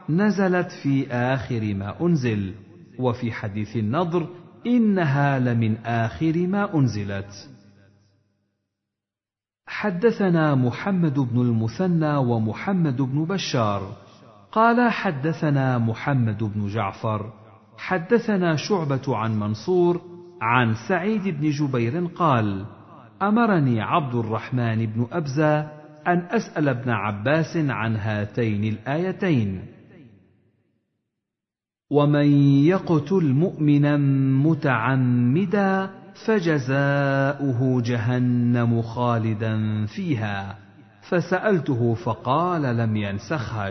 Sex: male